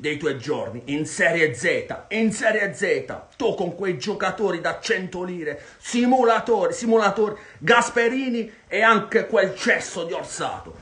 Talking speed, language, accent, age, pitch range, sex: 140 wpm, Italian, native, 40-59, 145-215 Hz, male